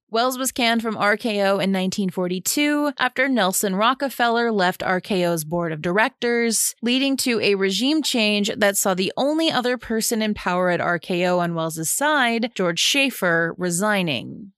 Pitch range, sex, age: 180-235 Hz, female, 30-49